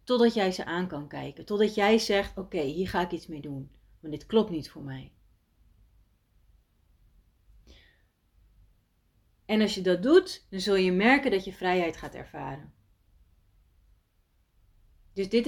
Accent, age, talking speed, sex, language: Dutch, 30-49, 145 wpm, female, Dutch